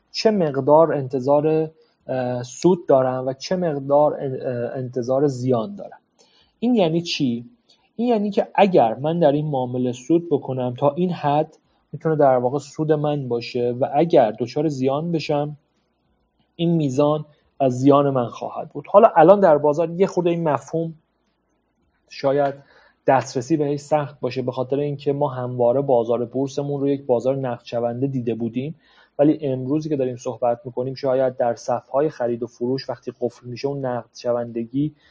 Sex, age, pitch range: male, 30-49, 125-150 Hz